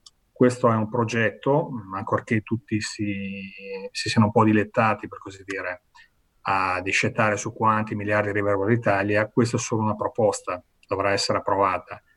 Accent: native